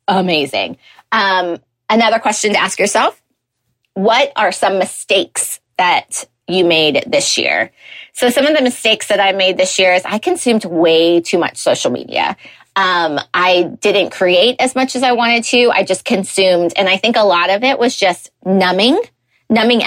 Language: English